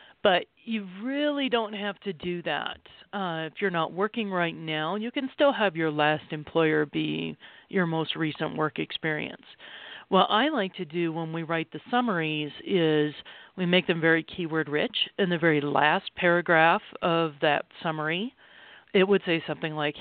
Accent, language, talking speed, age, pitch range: American, English, 175 wpm, 40-59, 155-195 Hz